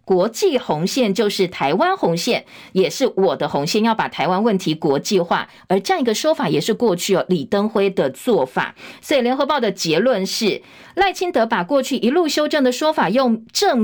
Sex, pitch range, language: female, 190-270 Hz, Chinese